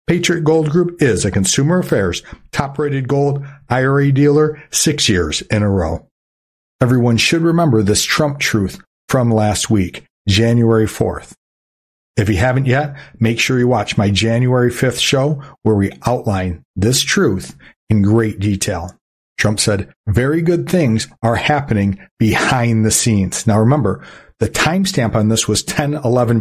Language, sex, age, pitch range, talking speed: English, male, 60-79, 105-140 Hz, 150 wpm